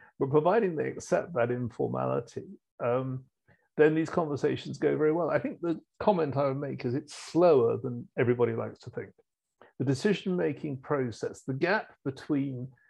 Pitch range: 120-155 Hz